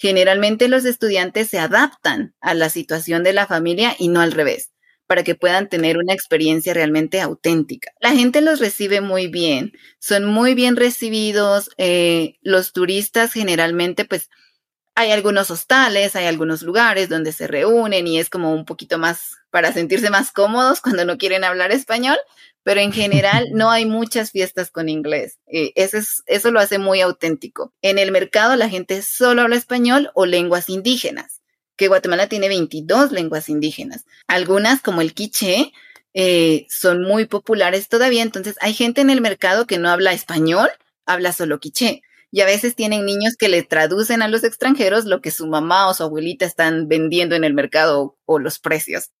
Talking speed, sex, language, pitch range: 175 wpm, female, Spanish, 170-225 Hz